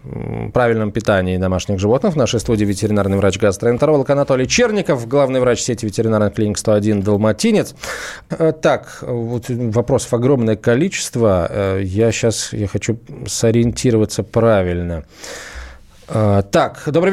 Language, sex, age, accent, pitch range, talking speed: Russian, male, 20-39, native, 120-170 Hz, 100 wpm